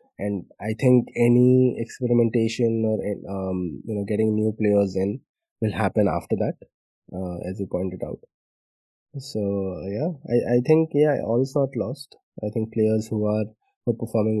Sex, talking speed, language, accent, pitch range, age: male, 165 wpm, English, Indian, 100-115 Hz, 20-39